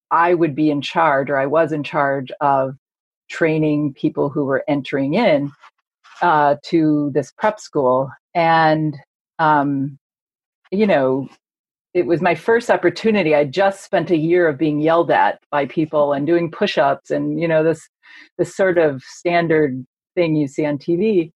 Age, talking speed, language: 40-59, 165 wpm, English